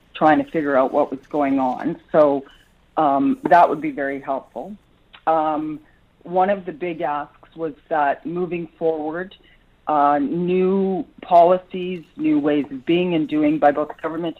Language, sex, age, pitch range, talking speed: English, female, 40-59, 140-175 Hz, 160 wpm